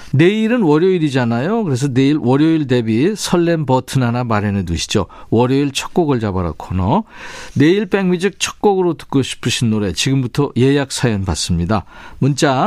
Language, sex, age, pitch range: Korean, male, 50-69, 115-165 Hz